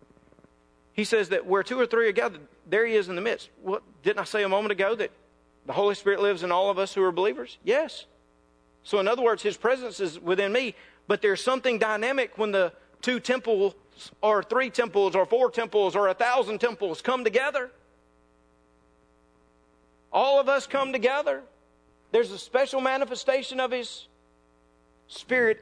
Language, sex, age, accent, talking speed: English, male, 50-69, American, 175 wpm